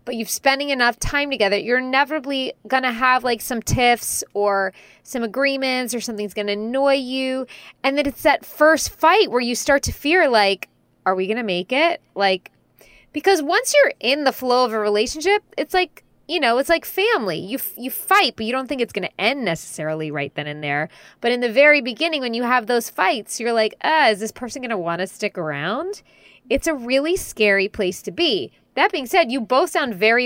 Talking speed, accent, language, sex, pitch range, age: 220 wpm, American, English, female, 190-265 Hz, 20-39